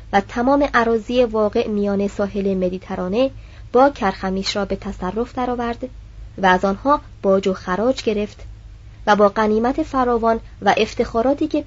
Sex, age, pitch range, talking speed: male, 30-49, 185-245 Hz, 140 wpm